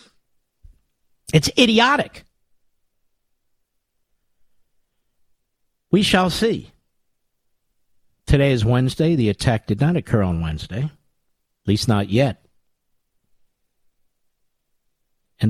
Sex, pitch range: male, 110-145 Hz